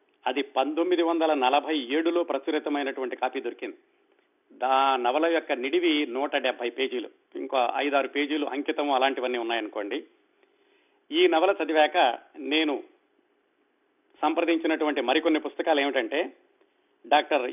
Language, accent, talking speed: Telugu, native, 105 wpm